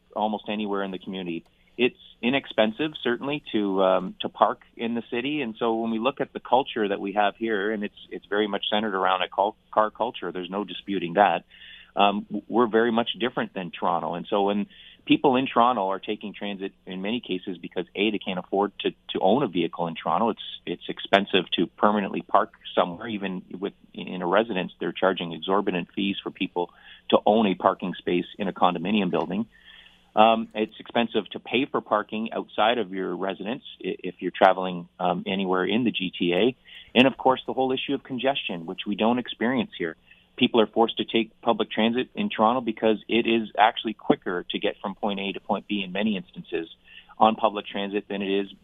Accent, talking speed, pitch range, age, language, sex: American, 200 wpm, 95-115 Hz, 30-49, English, male